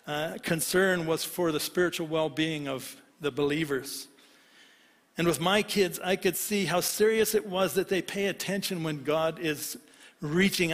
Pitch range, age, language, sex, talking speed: 160-205 Hz, 60-79, English, male, 160 wpm